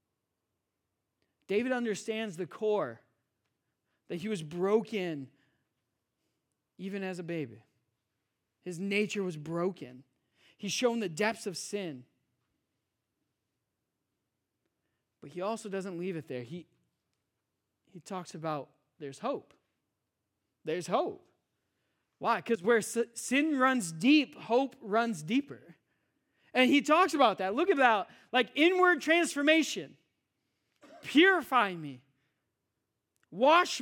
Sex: male